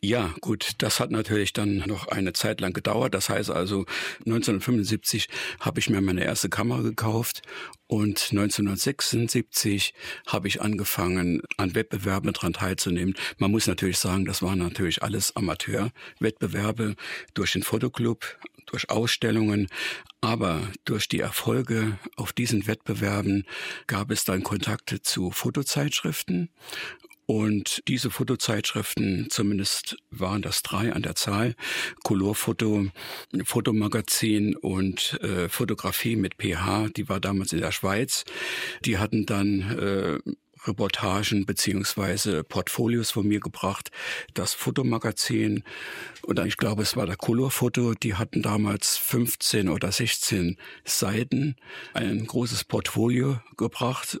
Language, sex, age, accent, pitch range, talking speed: German, male, 60-79, German, 100-115 Hz, 125 wpm